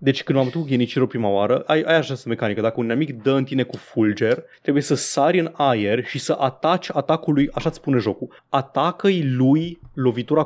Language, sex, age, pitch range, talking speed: Romanian, male, 20-39, 120-155 Hz, 205 wpm